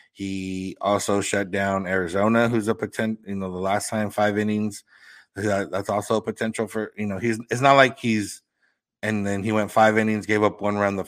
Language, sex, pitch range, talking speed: English, male, 90-105 Hz, 205 wpm